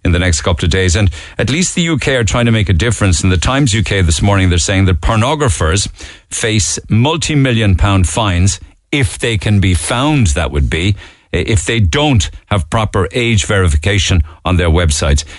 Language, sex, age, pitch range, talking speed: English, male, 50-69, 85-120 Hz, 190 wpm